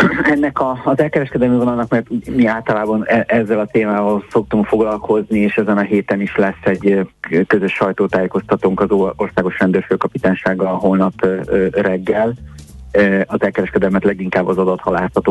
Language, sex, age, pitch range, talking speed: Hungarian, male, 30-49, 90-100 Hz, 135 wpm